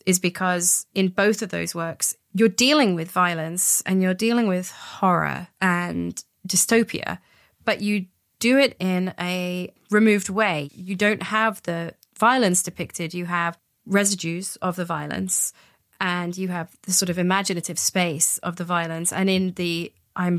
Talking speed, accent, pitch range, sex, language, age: 155 wpm, British, 165-195 Hz, female, English, 30-49